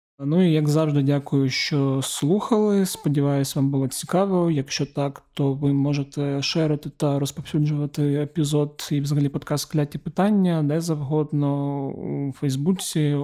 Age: 30-49